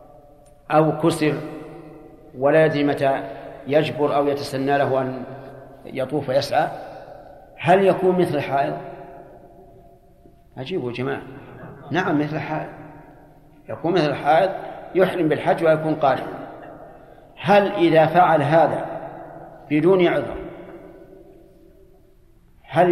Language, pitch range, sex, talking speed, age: Arabic, 135-160 Hz, male, 90 wpm, 50-69